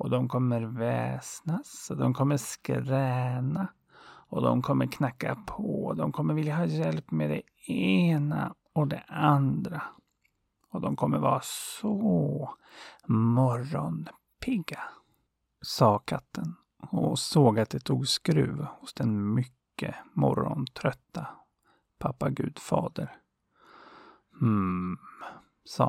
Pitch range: 110-145 Hz